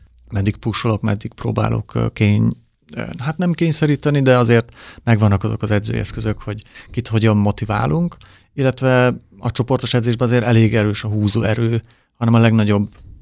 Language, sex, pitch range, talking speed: Hungarian, male, 105-120 Hz, 135 wpm